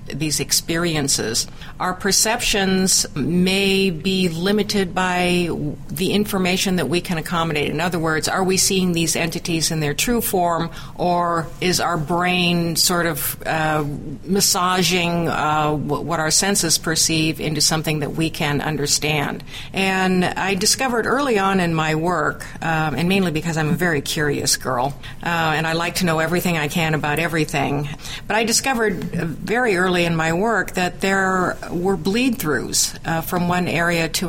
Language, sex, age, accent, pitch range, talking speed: English, female, 50-69, American, 155-185 Hz, 155 wpm